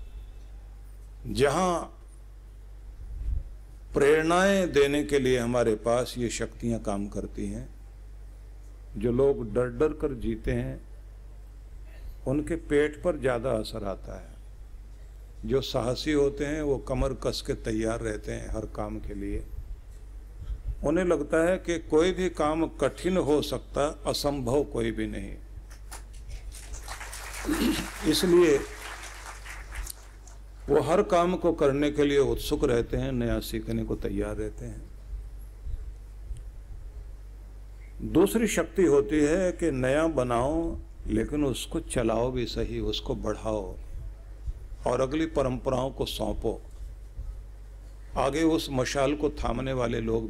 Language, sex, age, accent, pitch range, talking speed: Hindi, male, 50-69, native, 105-140 Hz, 115 wpm